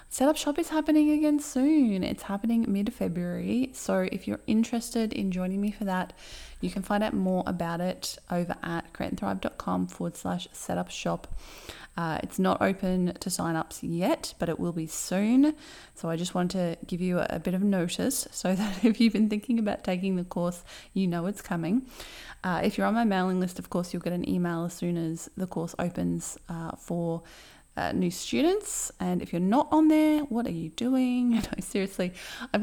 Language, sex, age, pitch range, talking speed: English, female, 20-39, 170-245 Hz, 195 wpm